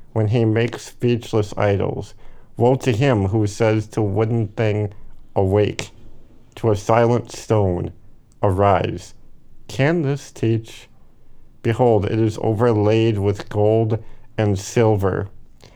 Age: 50-69